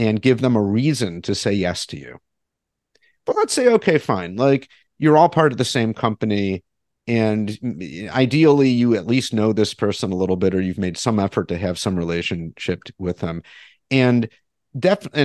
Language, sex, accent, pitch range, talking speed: English, male, American, 105-145 Hz, 185 wpm